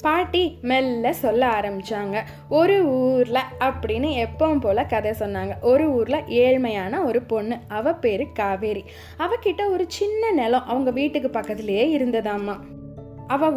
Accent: native